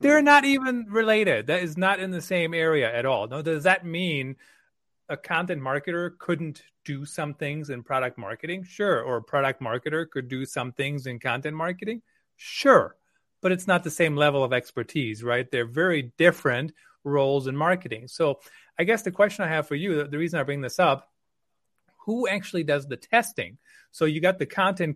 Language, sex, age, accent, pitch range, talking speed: English, male, 30-49, American, 135-185 Hz, 190 wpm